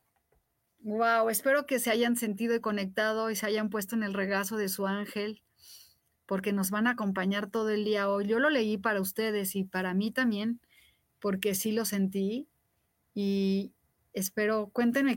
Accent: Mexican